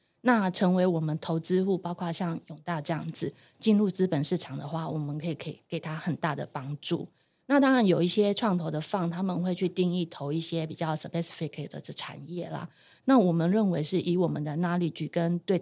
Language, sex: Chinese, female